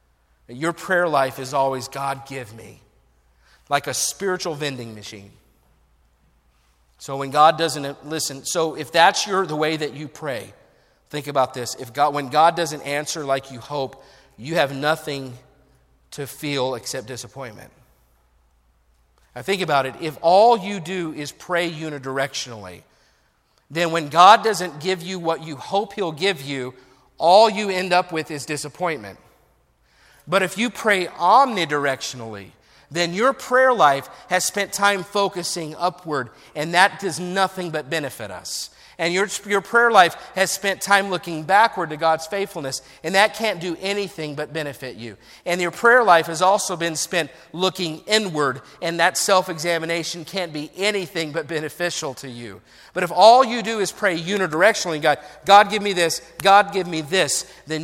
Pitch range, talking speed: 135-185 Hz, 160 wpm